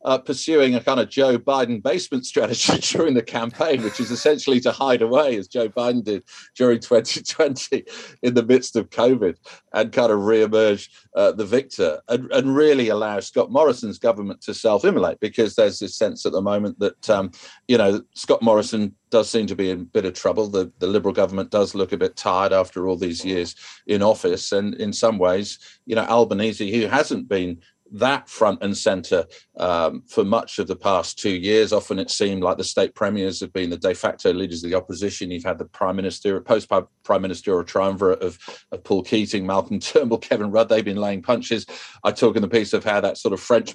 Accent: British